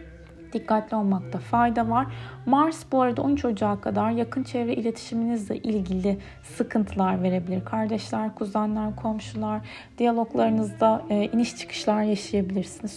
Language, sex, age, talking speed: Turkish, female, 30-49, 105 wpm